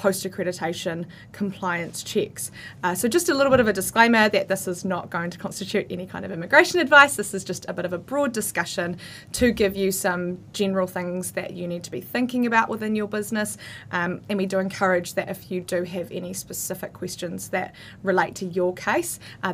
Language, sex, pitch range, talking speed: English, female, 175-210 Hz, 210 wpm